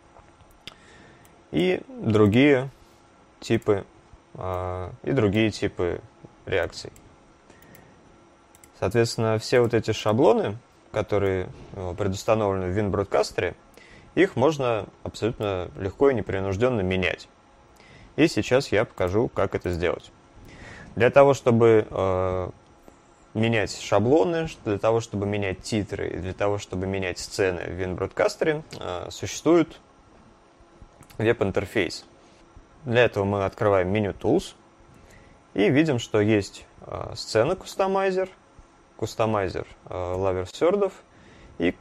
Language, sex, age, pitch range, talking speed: Russian, male, 20-39, 90-115 Hz, 95 wpm